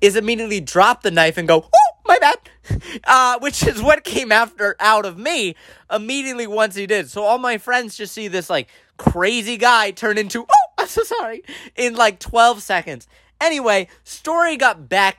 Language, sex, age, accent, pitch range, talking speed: English, male, 20-39, American, 165-260 Hz, 185 wpm